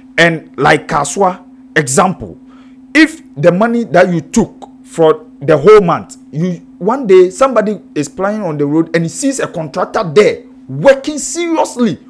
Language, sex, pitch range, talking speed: English, male, 165-260 Hz, 155 wpm